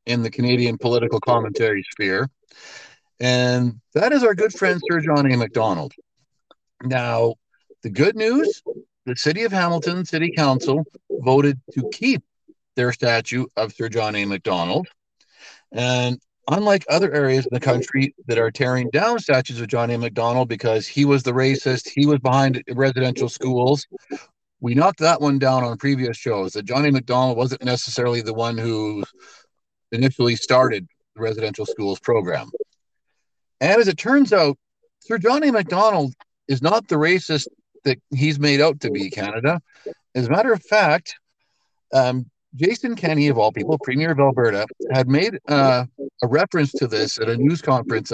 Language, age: English, 50-69